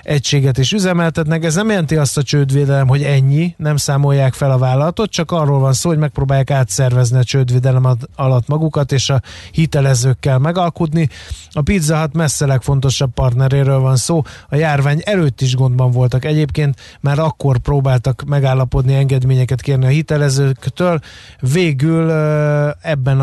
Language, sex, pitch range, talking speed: Hungarian, male, 130-150 Hz, 140 wpm